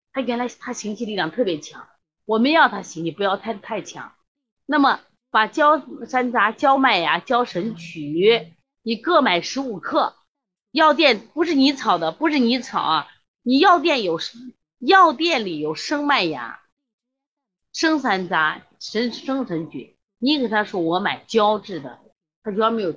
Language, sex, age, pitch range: Chinese, female, 30-49, 175-290 Hz